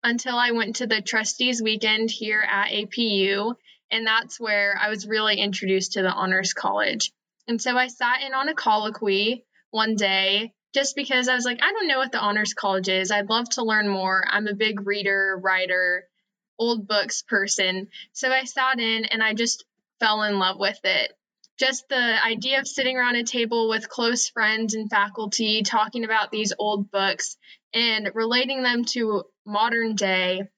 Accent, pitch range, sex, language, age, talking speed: American, 200-235 Hz, female, English, 10-29, 185 wpm